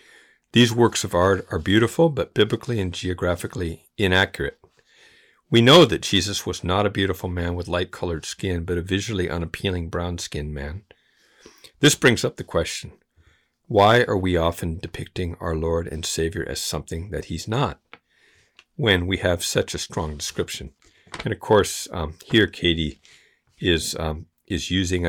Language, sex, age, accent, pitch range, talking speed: English, male, 50-69, American, 85-100 Hz, 155 wpm